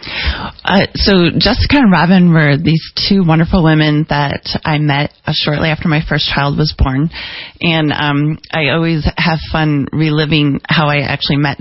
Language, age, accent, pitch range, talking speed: English, 30-49, American, 140-160 Hz, 165 wpm